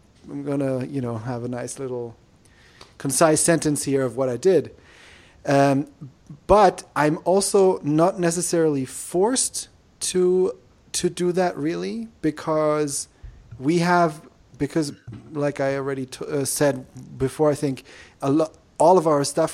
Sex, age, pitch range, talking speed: male, 30-49, 130-155 Hz, 140 wpm